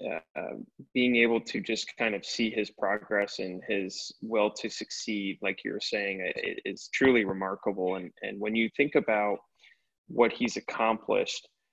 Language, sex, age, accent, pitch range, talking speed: English, male, 20-39, American, 100-125 Hz, 165 wpm